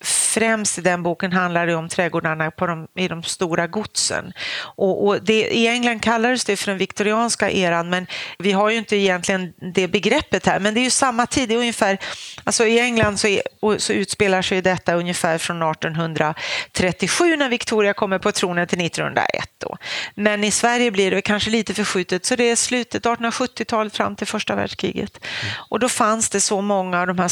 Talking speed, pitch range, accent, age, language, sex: 170 wpm, 180-230 Hz, native, 40-59, Swedish, female